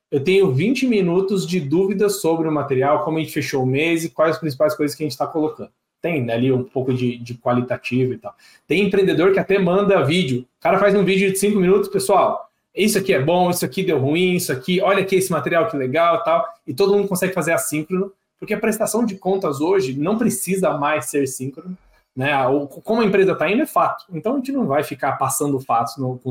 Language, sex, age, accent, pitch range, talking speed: Portuguese, male, 20-39, Brazilian, 145-195 Hz, 235 wpm